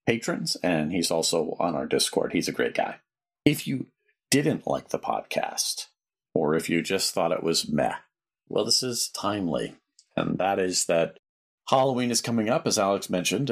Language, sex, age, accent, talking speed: English, male, 40-59, American, 180 wpm